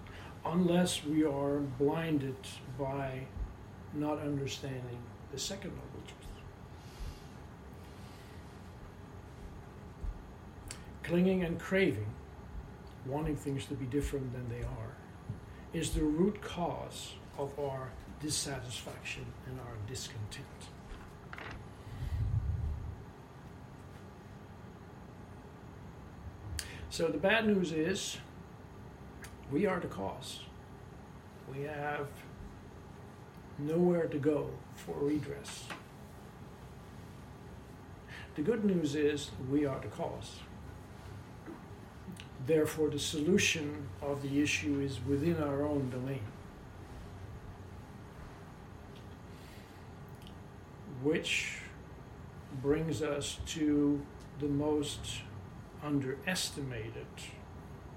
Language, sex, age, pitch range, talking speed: English, male, 60-79, 105-150 Hz, 75 wpm